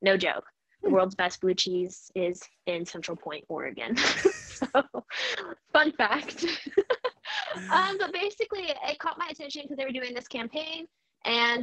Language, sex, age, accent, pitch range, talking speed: English, female, 10-29, American, 185-235 Hz, 150 wpm